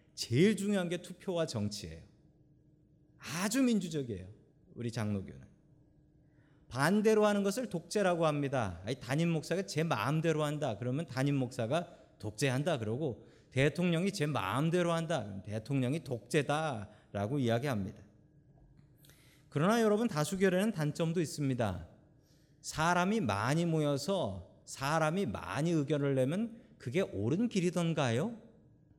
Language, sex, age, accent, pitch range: Korean, male, 40-59, native, 130-180 Hz